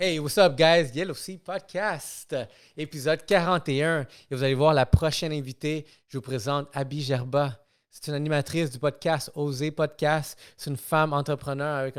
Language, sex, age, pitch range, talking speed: French, male, 30-49, 130-155 Hz, 165 wpm